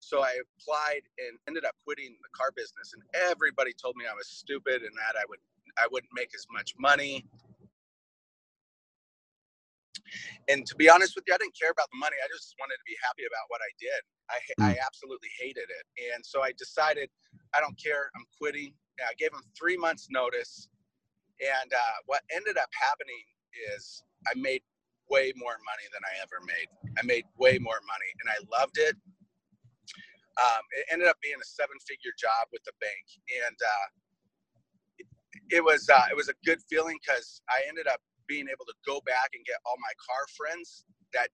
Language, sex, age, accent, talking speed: English, male, 30-49, American, 195 wpm